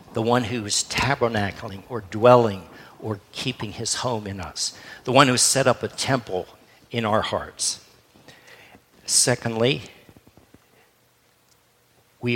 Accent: American